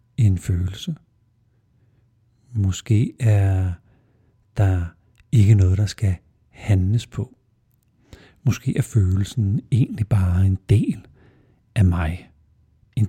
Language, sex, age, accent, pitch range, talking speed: Danish, male, 60-79, native, 95-120 Hz, 95 wpm